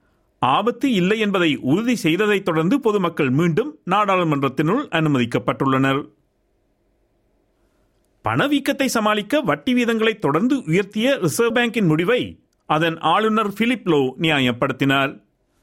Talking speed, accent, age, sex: 90 wpm, native, 50-69, male